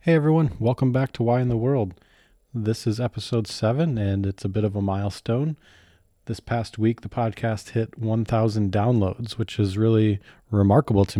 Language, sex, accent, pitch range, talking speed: English, male, American, 105-115 Hz, 175 wpm